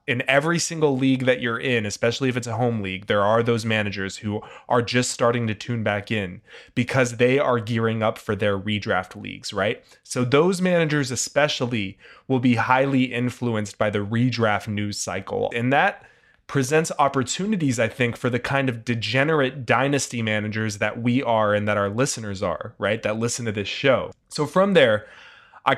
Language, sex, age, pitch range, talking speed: English, male, 20-39, 110-130 Hz, 185 wpm